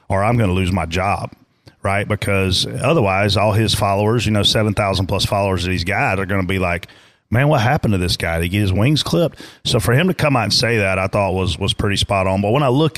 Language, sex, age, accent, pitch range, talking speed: English, male, 40-59, American, 100-120 Hz, 270 wpm